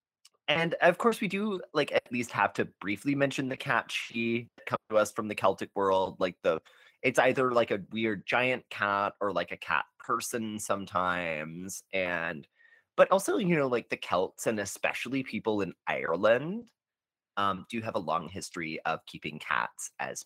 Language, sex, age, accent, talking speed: English, male, 30-49, American, 180 wpm